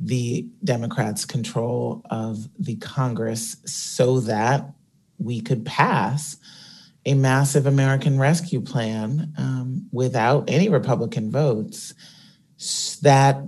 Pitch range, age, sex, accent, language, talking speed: 125-155 Hz, 40-59, male, American, English, 100 wpm